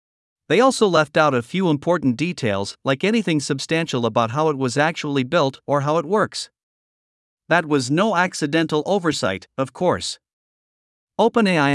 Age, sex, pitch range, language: 50-69, male, 130-170 Hz, Vietnamese